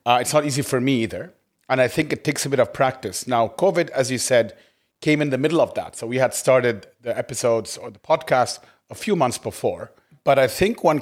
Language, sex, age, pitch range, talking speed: English, male, 40-59, 115-135 Hz, 240 wpm